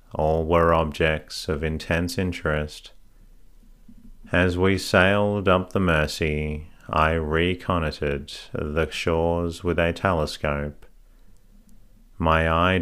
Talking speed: 100 wpm